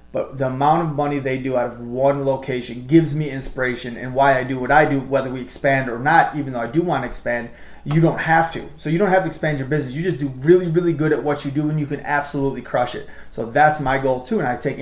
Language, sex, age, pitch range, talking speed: English, male, 20-39, 135-165 Hz, 280 wpm